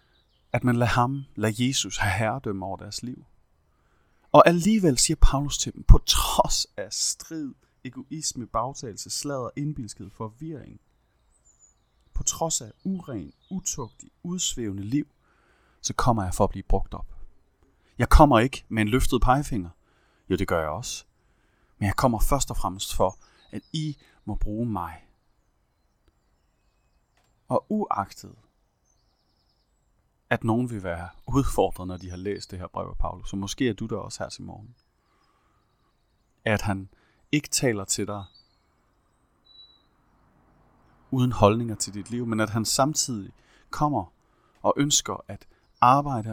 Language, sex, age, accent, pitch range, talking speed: Danish, male, 30-49, native, 95-130 Hz, 140 wpm